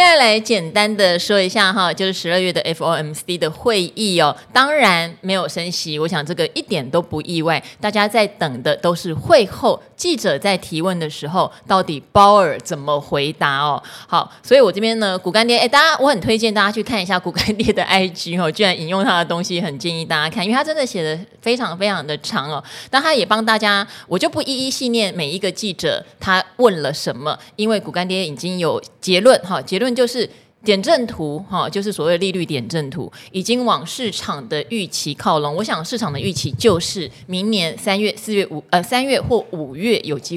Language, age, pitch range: Chinese, 20-39, 165-220 Hz